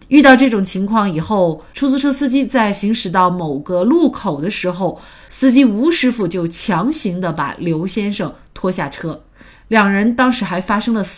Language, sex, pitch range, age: Chinese, female, 175-250 Hz, 20-39